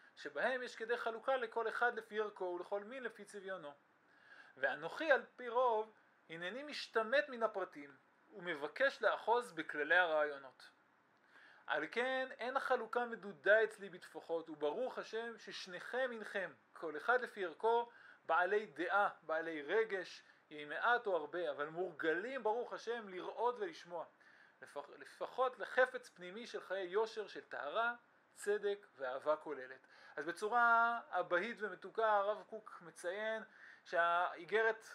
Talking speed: 125 wpm